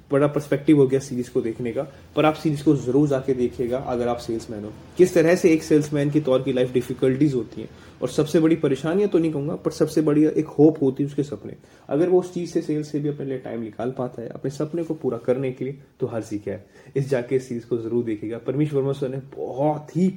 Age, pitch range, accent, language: 20-39, 125-150 Hz, native, Hindi